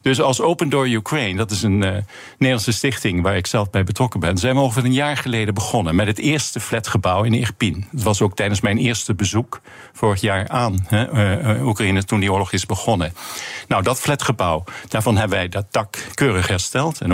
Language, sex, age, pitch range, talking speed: Dutch, male, 50-69, 100-125 Hz, 205 wpm